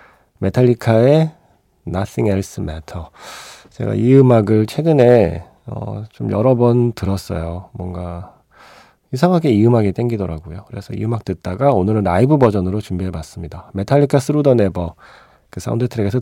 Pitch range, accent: 90-130 Hz, native